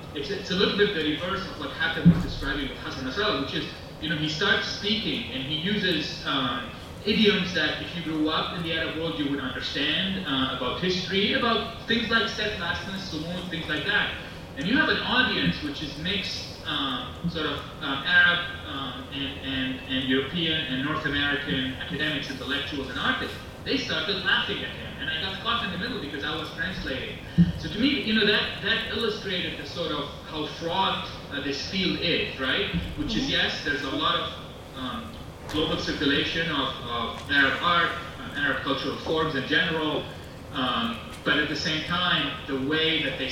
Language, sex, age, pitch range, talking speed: English, male, 30-49, 135-175 Hz, 195 wpm